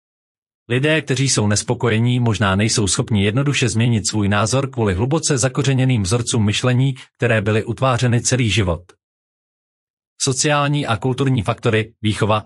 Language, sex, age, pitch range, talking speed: Czech, male, 40-59, 115-150 Hz, 125 wpm